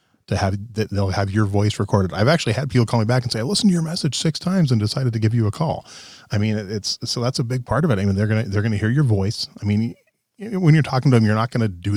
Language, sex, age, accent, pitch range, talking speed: English, male, 30-49, American, 100-130 Hz, 305 wpm